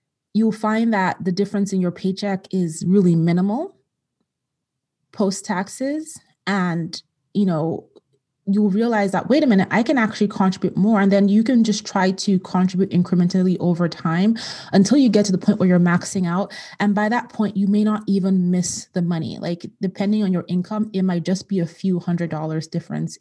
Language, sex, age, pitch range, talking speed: English, female, 20-39, 170-205 Hz, 190 wpm